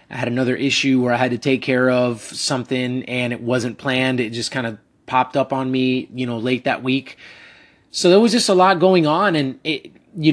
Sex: male